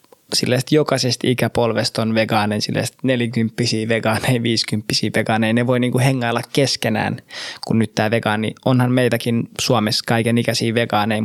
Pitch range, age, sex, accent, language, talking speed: 115-130 Hz, 20-39, male, native, Finnish, 135 wpm